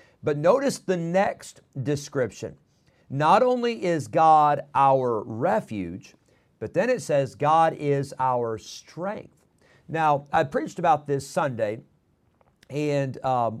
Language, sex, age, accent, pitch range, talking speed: English, male, 50-69, American, 130-165 Hz, 120 wpm